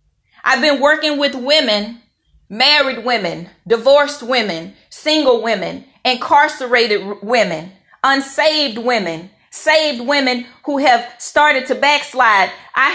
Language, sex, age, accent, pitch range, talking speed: English, female, 30-49, American, 230-290 Hz, 105 wpm